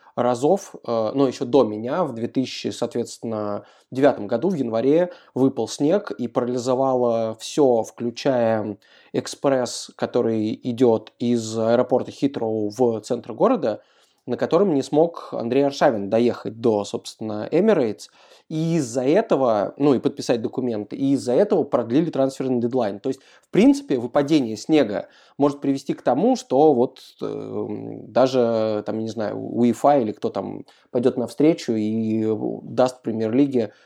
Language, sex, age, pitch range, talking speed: Russian, male, 20-39, 115-140 Hz, 130 wpm